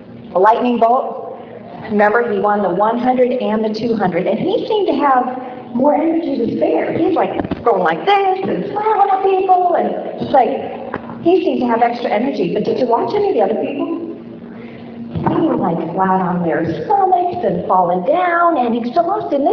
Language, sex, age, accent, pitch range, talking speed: English, female, 50-69, American, 215-305 Hz, 185 wpm